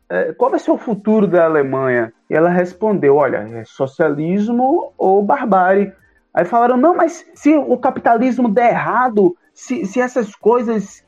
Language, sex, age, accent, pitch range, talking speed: Portuguese, male, 20-39, Brazilian, 145-210 Hz, 150 wpm